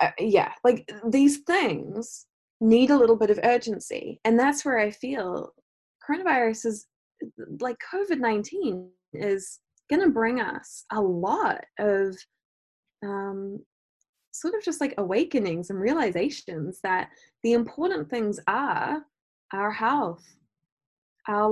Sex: female